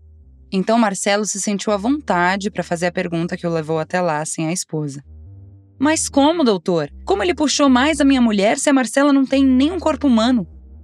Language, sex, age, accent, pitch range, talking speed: Portuguese, female, 20-39, Brazilian, 165-235 Hz, 200 wpm